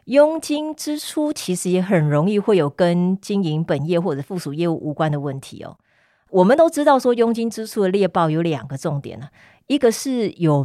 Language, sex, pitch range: Chinese, female, 155-225 Hz